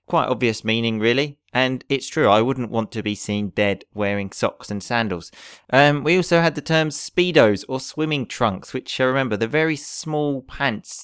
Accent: British